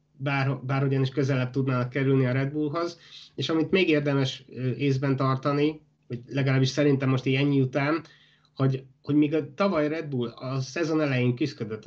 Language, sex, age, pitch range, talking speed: Hungarian, male, 20-39, 135-160 Hz, 160 wpm